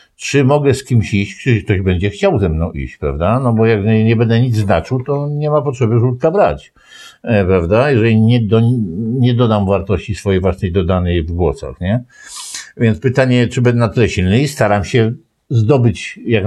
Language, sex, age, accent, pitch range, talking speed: Polish, male, 60-79, native, 100-140 Hz, 180 wpm